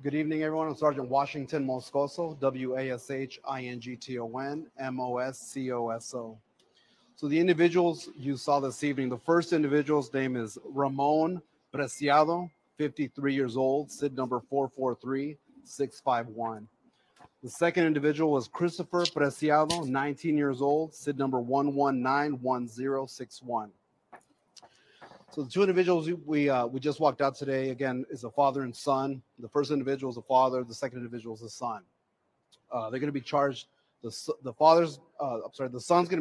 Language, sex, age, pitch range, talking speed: English, male, 30-49, 125-150 Hz, 145 wpm